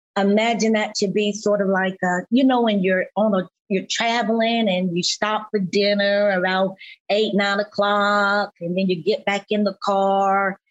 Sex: female